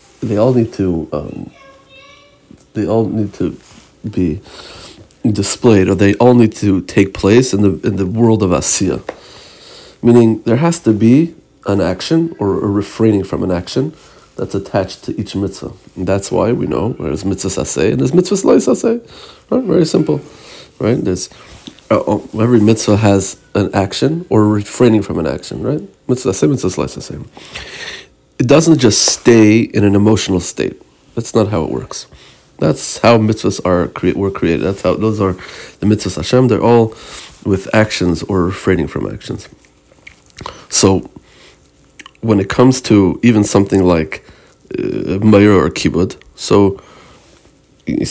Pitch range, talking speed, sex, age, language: 95-115 Hz, 155 wpm, male, 40-59, Hebrew